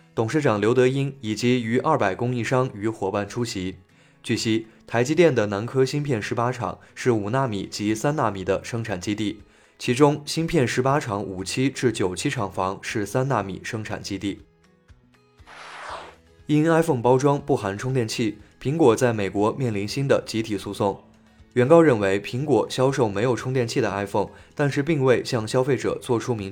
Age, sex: 20-39, male